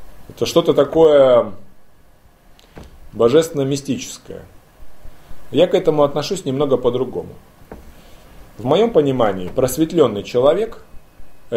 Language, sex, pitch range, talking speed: Russian, male, 110-150 Hz, 85 wpm